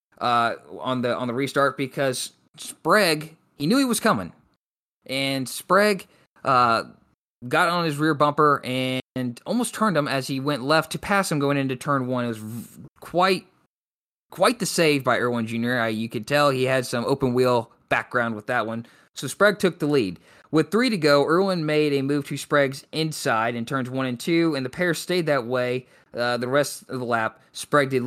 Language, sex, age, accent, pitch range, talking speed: English, male, 20-39, American, 125-160 Hz, 200 wpm